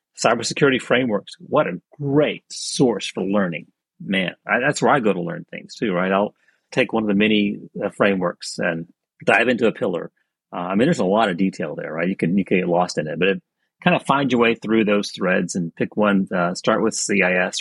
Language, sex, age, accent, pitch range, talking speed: English, male, 40-59, American, 95-115 Hz, 230 wpm